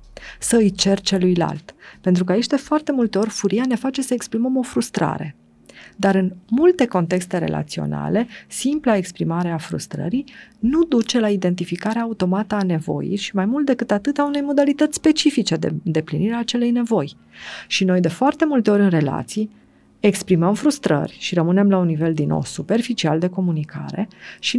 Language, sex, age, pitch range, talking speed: Romanian, female, 40-59, 165-215 Hz, 165 wpm